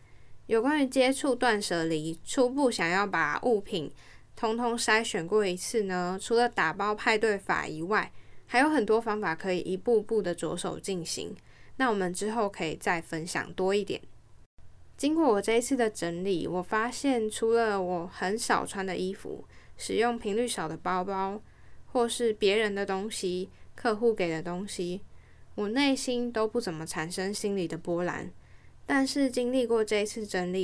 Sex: female